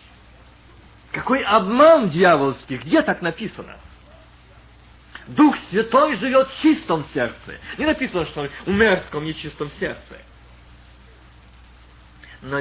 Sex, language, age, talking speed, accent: male, Russian, 50-69, 100 wpm, native